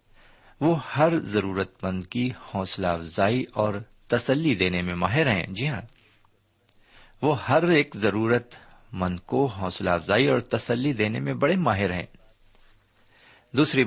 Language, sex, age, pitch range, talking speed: Urdu, male, 50-69, 95-125 Hz, 135 wpm